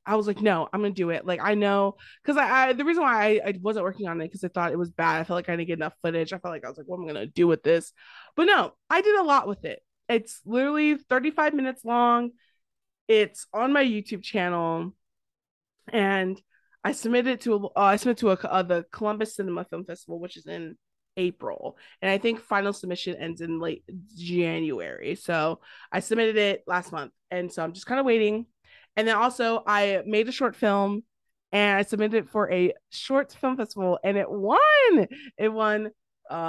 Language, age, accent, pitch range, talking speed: English, 20-39, American, 180-235 Hz, 220 wpm